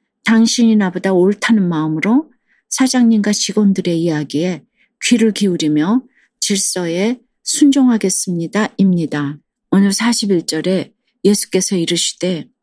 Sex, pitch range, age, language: female, 175-225 Hz, 40-59, Korean